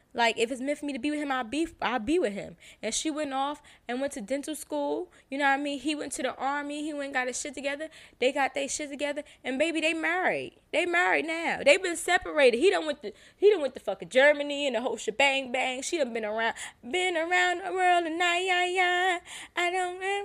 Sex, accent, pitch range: female, American, 250-335 Hz